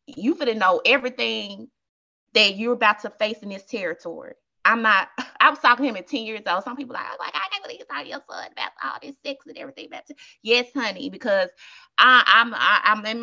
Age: 20-39